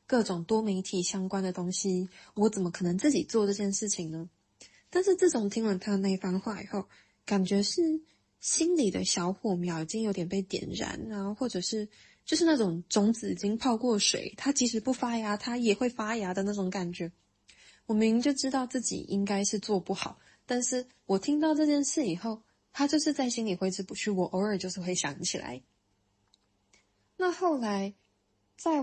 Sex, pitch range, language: female, 185-230 Hz, Chinese